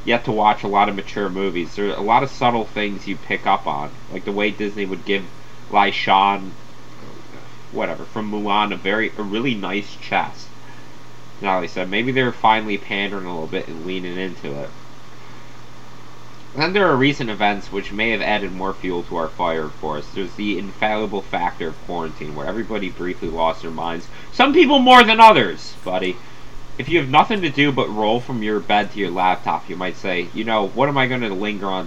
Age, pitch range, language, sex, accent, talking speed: 30-49, 95-135 Hz, English, male, American, 210 wpm